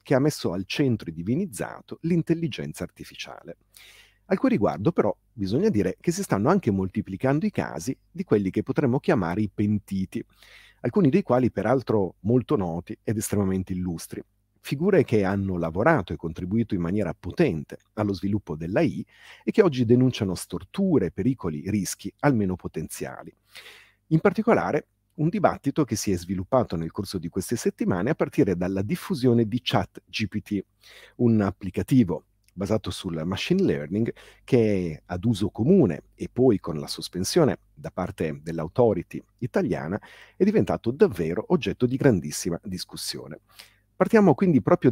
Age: 40-59